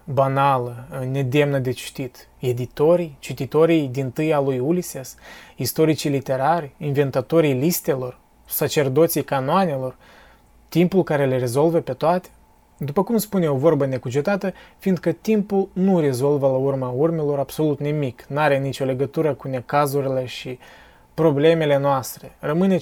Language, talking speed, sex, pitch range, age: Romanian, 125 wpm, male, 130-165 Hz, 20-39